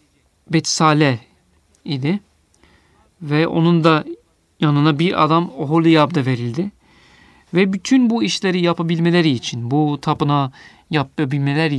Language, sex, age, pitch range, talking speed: Turkish, male, 40-59, 130-170 Hz, 100 wpm